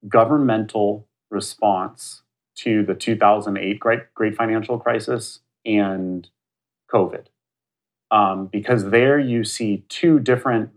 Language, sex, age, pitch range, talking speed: English, male, 30-49, 95-120 Hz, 100 wpm